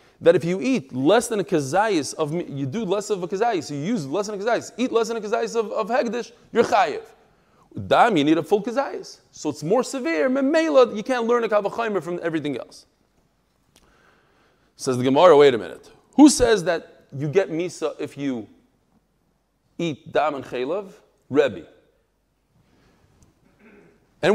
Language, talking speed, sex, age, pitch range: English, 170 wpm, male, 30-49, 165-250 Hz